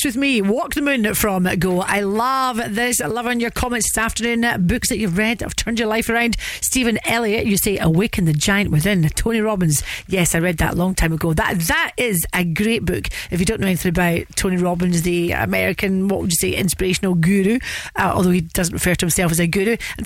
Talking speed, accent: 230 wpm, British